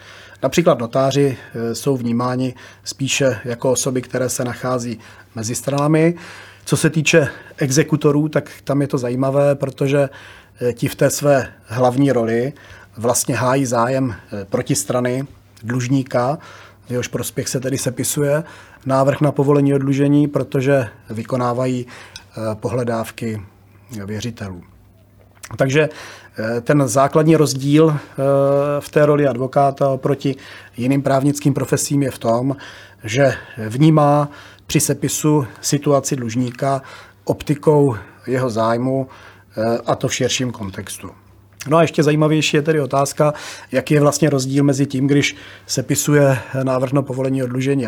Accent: native